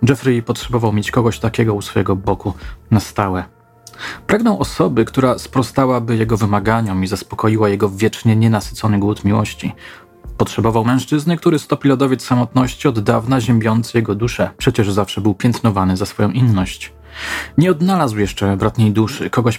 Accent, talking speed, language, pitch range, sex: native, 145 wpm, Polish, 100-120 Hz, male